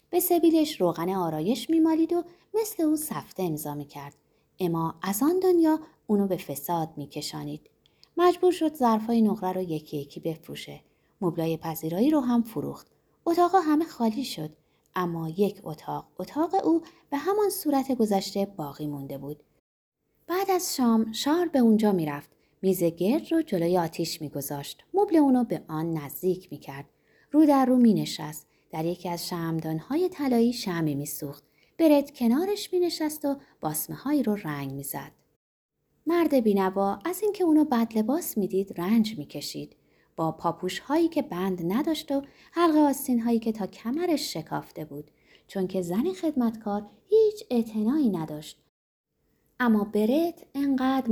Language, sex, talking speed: Persian, female, 140 wpm